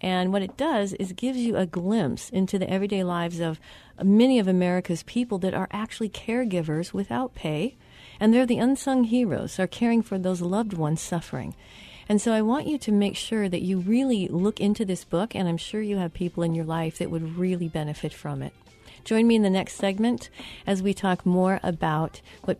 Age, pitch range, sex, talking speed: 40-59, 170-210 Hz, female, 205 wpm